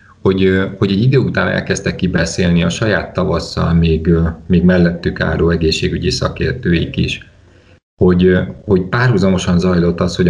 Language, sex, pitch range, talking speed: Hungarian, male, 85-95 Hz, 135 wpm